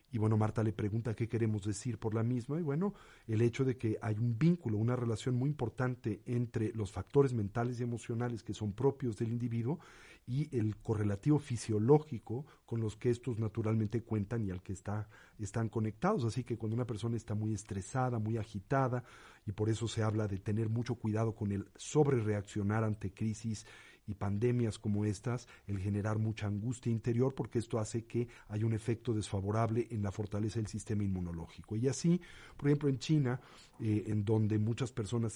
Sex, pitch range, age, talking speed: male, 105-125 Hz, 40-59, 185 wpm